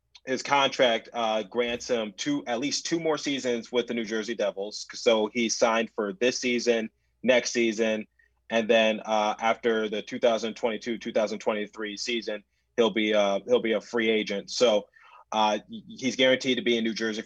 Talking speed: 170 wpm